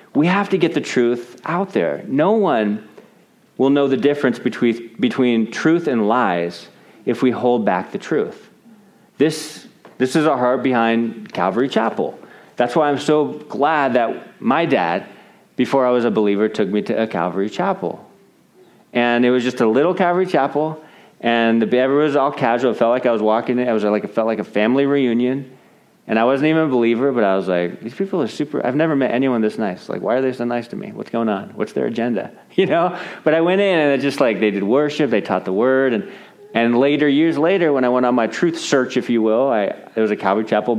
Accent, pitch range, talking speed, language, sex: American, 115-150 Hz, 225 wpm, English, male